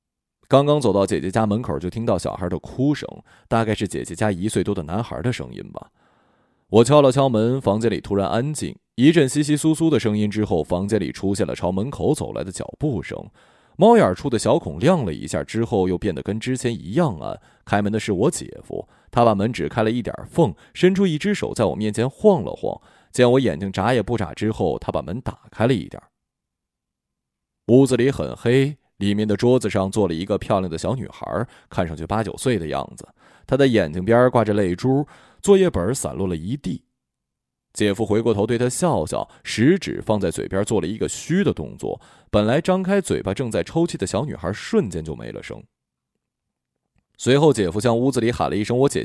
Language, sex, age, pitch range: Chinese, male, 20-39, 95-125 Hz